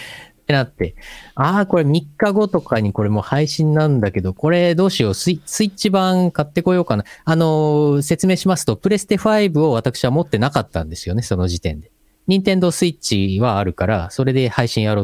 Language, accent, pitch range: Japanese, native, 100-150 Hz